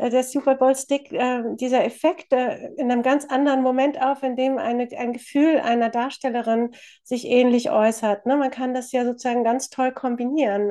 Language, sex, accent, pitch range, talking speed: German, female, German, 230-270 Hz, 175 wpm